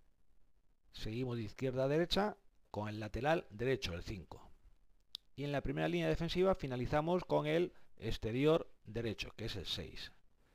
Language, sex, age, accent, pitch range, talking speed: Spanish, male, 40-59, Spanish, 105-145 Hz, 150 wpm